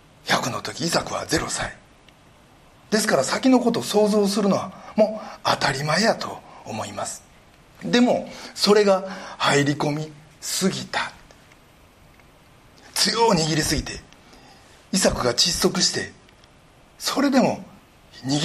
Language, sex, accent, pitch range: Japanese, male, native, 150-220 Hz